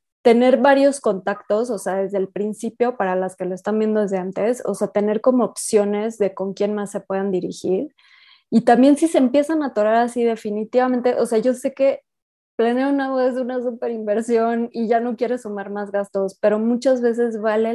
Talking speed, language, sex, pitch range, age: 205 wpm, Spanish, female, 195-235 Hz, 20-39